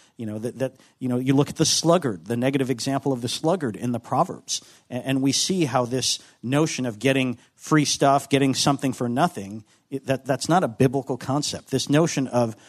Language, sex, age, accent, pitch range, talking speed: English, male, 50-69, American, 115-145 Hz, 215 wpm